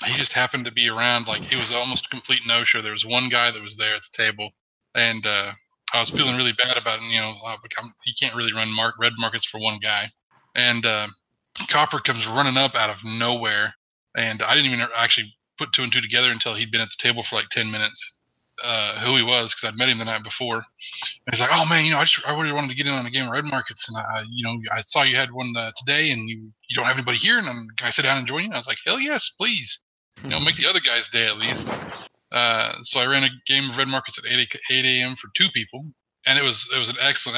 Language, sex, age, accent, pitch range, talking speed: English, male, 20-39, American, 115-130 Hz, 280 wpm